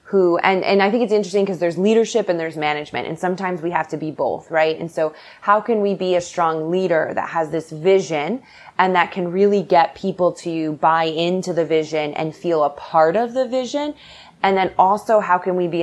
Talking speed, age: 225 wpm, 20-39